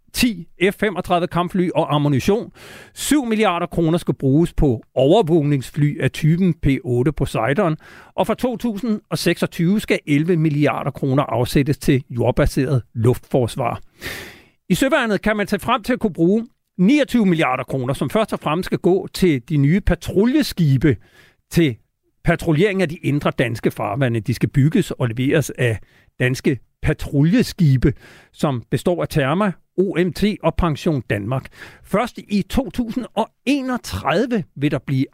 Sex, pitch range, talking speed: male, 140-190 Hz, 135 wpm